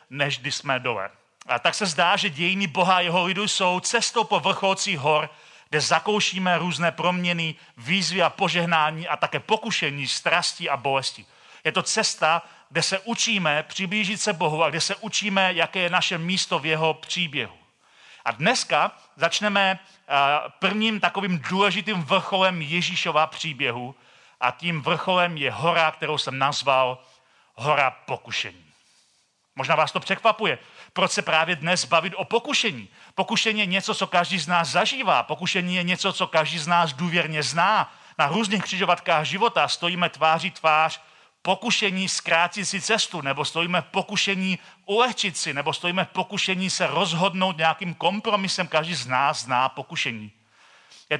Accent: native